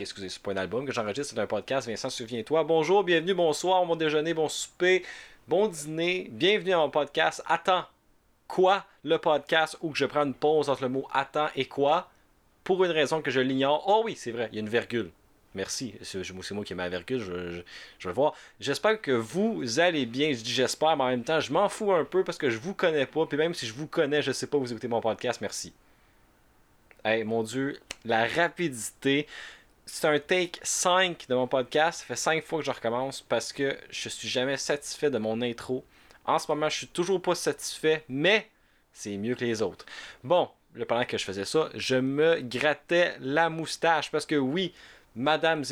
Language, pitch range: French, 115-160 Hz